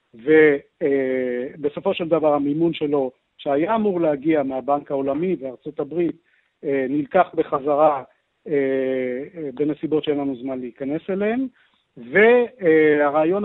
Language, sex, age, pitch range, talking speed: Hebrew, male, 50-69, 145-190 Hz, 105 wpm